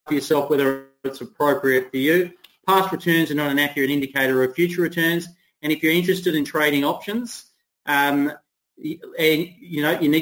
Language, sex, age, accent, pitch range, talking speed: English, male, 30-49, Australian, 145-175 Hz, 175 wpm